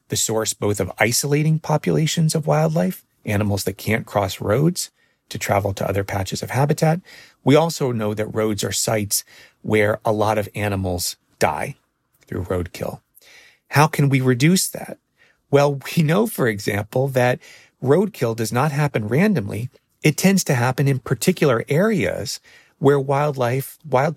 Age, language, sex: 40-59, English, male